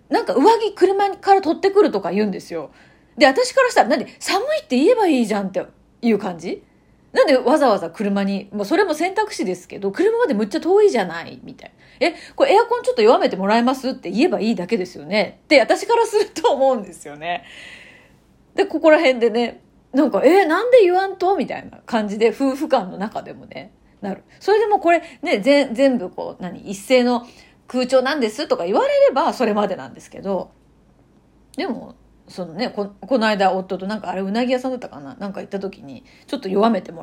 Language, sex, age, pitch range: Japanese, female, 30-49, 200-340 Hz